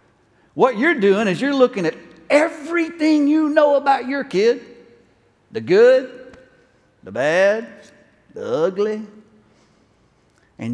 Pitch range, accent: 165-270 Hz, American